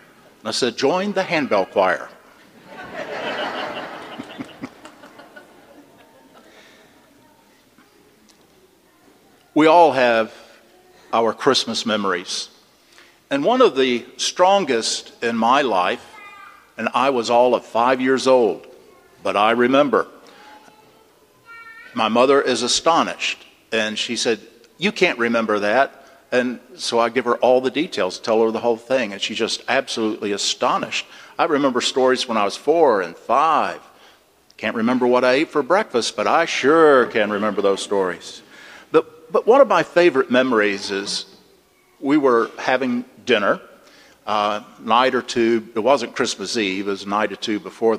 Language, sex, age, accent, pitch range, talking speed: English, male, 50-69, American, 110-135 Hz, 140 wpm